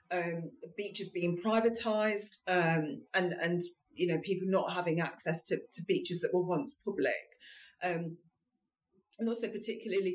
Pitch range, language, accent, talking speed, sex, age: 170-200 Hz, English, British, 140 wpm, female, 40-59